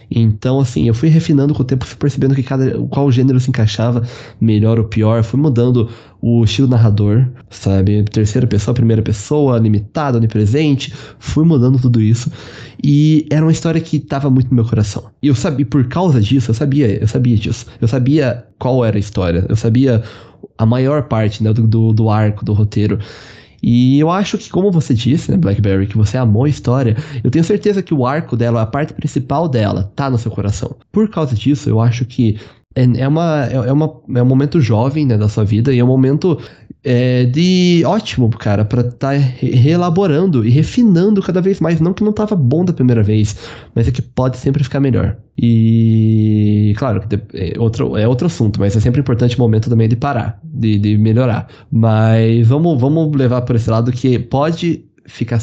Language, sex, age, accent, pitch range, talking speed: Portuguese, male, 20-39, Brazilian, 110-145 Hz, 195 wpm